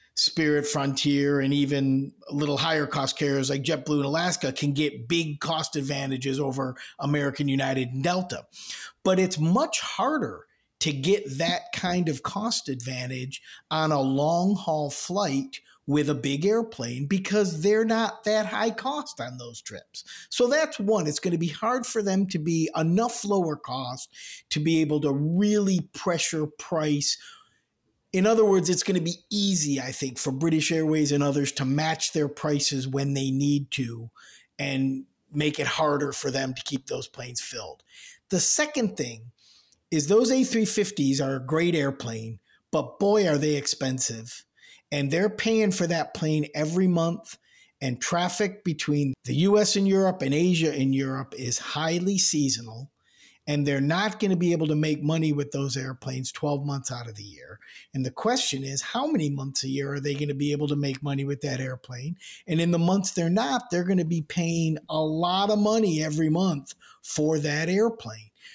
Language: English